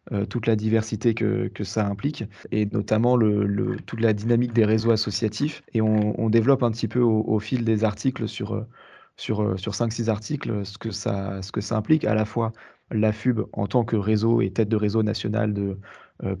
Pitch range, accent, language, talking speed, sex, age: 105-115 Hz, French, French, 210 wpm, male, 20-39